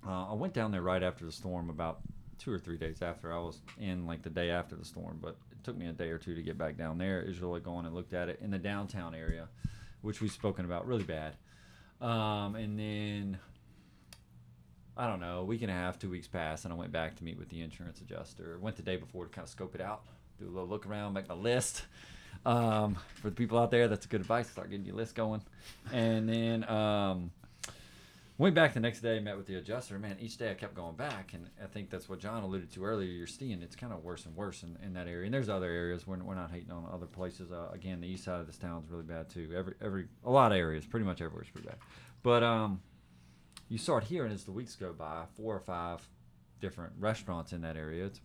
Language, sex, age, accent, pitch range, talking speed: English, male, 30-49, American, 85-105 Hz, 255 wpm